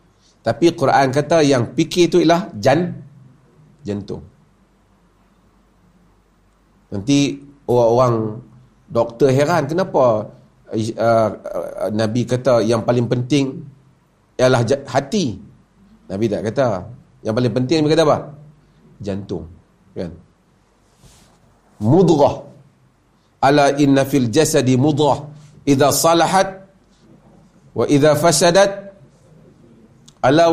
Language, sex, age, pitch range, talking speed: Malay, male, 50-69, 120-170 Hz, 90 wpm